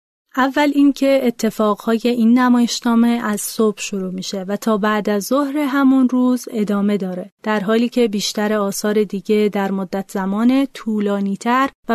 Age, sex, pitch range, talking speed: 30-49, female, 205-260 Hz, 145 wpm